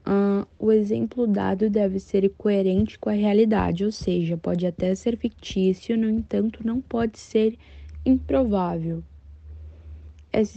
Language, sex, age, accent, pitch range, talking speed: Portuguese, female, 10-29, Brazilian, 175-205 Hz, 125 wpm